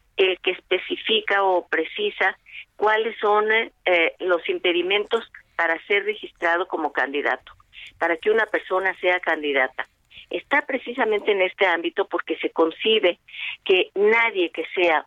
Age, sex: 40-59, female